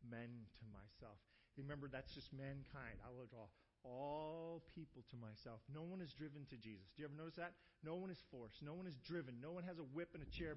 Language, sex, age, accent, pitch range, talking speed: English, male, 40-59, American, 140-230 Hz, 235 wpm